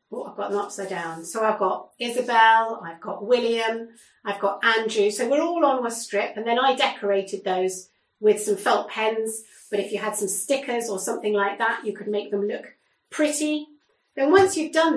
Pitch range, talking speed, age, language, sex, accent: 205-275 Hz, 200 wpm, 40-59, English, female, British